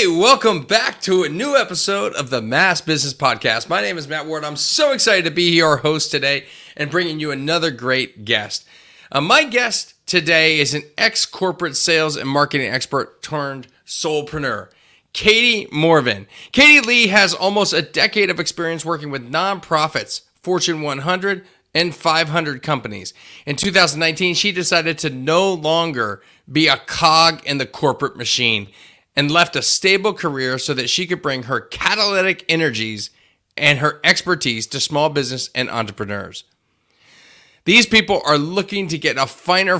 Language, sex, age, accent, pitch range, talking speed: English, male, 30-49, American, 135-185 Hz, 160 wpm